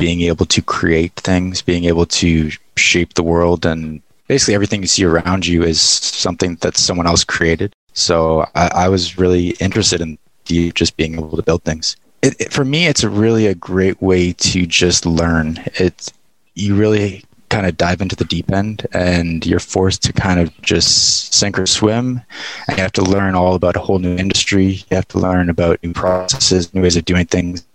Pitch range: 85-100 Hz